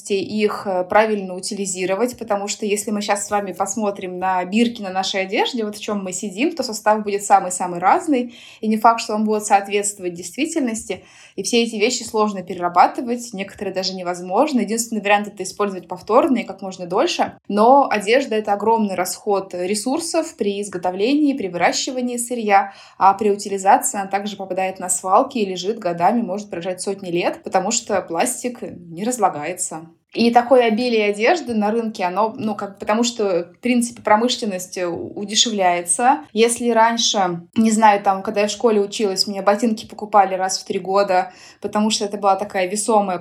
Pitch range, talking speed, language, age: 190-230 Hz, 165 wpm, Russian, 20-39